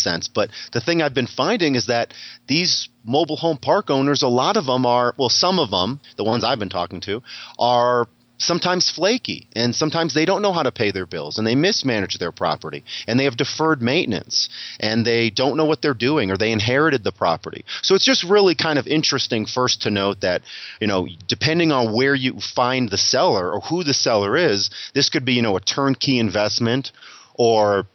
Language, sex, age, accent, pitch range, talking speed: English, male, 30-49, American, 105-135 Hz, 210 wpm